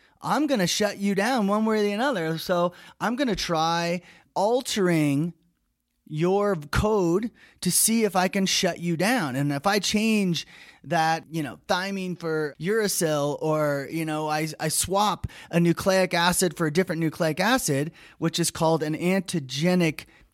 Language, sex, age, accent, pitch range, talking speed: English, male, 30-49, American, 145-195 Hz, 165 wpm